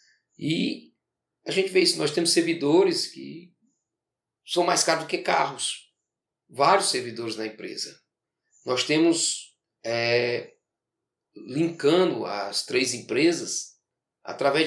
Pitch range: 135-165 Hz